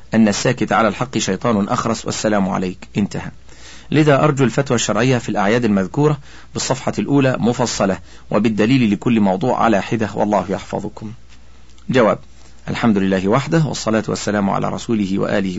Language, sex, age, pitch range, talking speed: Arabic, male, 40-59, 95-130 Hz, 135 wpm